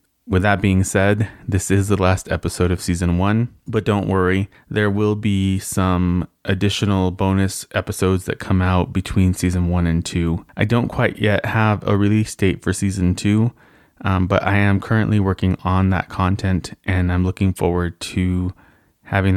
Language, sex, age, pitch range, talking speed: English, male, 30-49, 90-100 Hz, 175 wpm